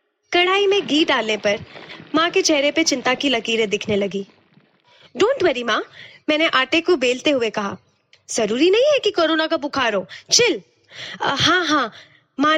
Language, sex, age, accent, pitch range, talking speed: Hindi, female, 20-39, native, 235-345 Hz, 170 wpm